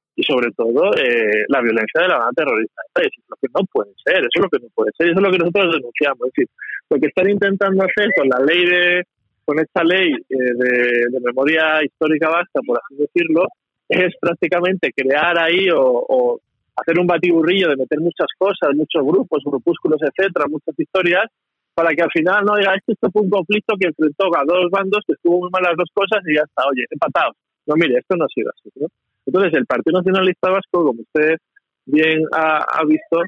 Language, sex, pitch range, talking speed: Spanish, male, 150-195 Hz, 215 wpm